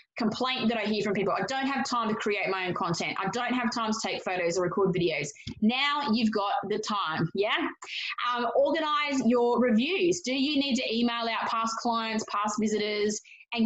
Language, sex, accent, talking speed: English, female, Australian, 200 wpm